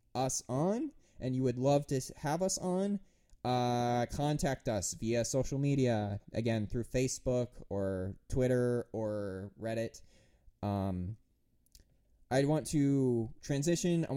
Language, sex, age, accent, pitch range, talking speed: English, male, 20-39, American, 115-150 Hz, 125 wpm